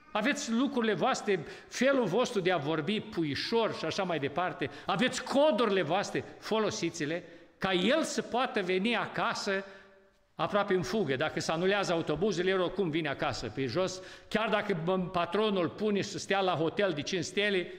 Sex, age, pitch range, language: male, 50-69, 140-190 Hz, Romanian